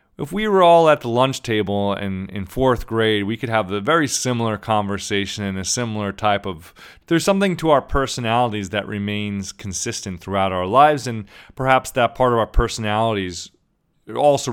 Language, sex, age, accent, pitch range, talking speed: English, male, 30-49, American, 100-140 Hz, 180 wpm